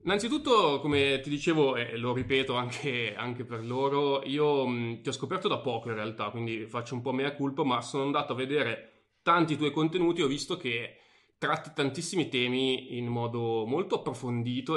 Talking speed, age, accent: 175 wpm, 20-39, native